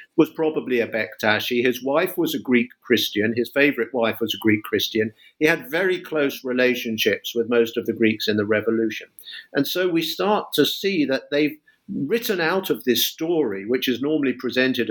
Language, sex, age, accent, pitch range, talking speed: English, male, 50-69, British, 120-175 Hz, 190 wpm